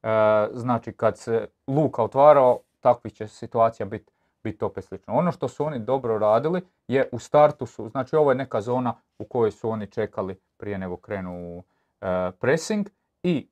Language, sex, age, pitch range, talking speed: Croatian, male, 40-59, 105-135 Hz, 180 wpm